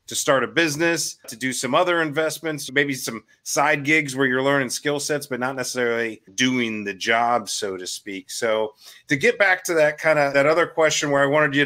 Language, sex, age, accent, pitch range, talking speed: English, male, 40-59, American, 125-155 Hz, 215 wpm